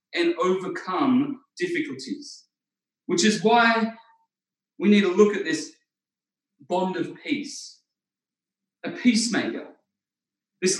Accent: Australian